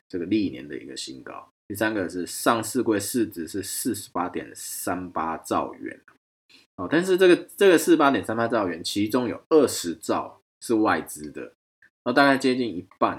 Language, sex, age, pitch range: Chinese, male, 20-39, 90-130 Hz